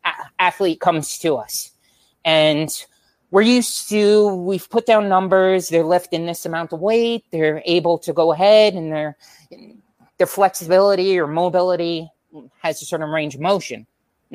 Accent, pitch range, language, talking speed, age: American, 150-185 Hz, English, 150 wpm, 20-39